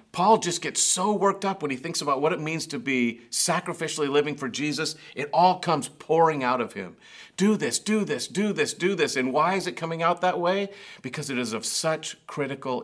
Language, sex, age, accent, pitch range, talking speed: English, male, 50-69, American, 120-170 Hz, 225 wpm